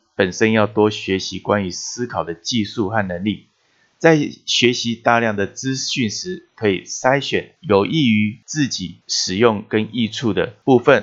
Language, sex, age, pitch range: Chinese, male, 20-39, 100-130 Hz